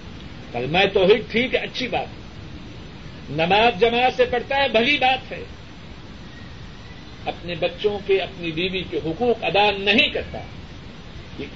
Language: Urdu